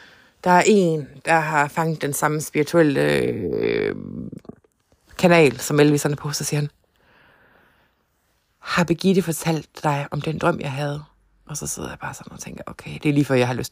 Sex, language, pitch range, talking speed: female, Danish, 150-195 Hz, 185 wpm